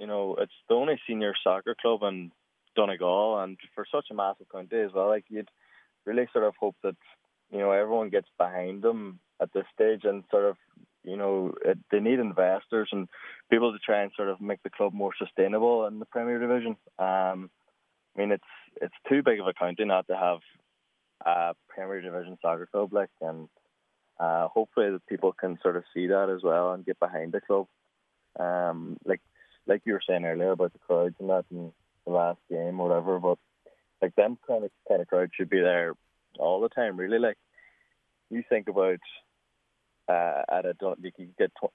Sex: male